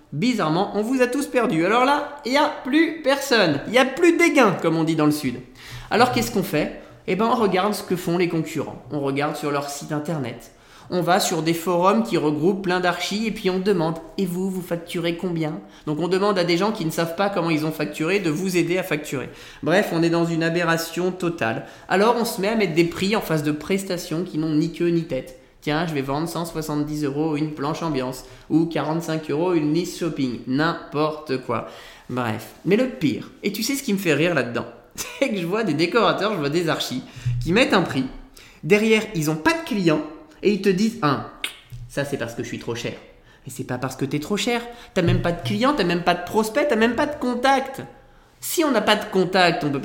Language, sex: French, male